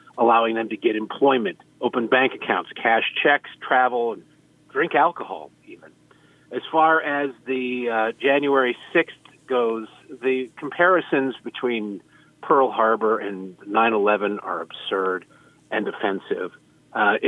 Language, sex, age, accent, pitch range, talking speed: English, male, 40-59, American, 110-140 Hz, 120 wpm